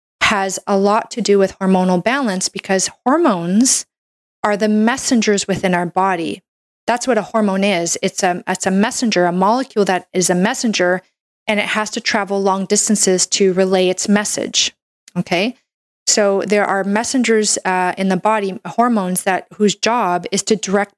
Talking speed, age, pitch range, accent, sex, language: 170 wpm, 30-49, 185-215 Hz, American, female, English